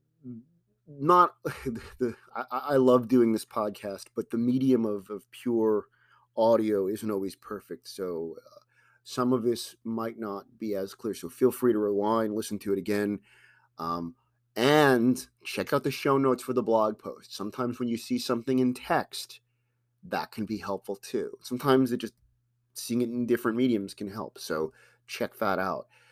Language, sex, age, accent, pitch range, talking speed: English, male, 30-49, American, 110-130 Hz, 170 wpm